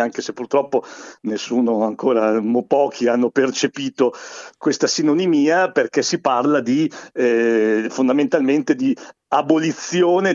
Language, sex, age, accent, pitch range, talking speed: Italian, male, 50-69, native, 125-180 Hz, 105 wpm